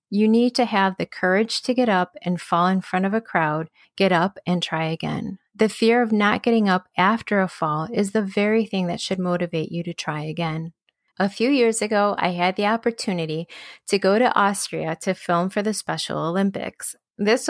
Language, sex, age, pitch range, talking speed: English, female, 30-49, 175-210 Hz, 205 wpm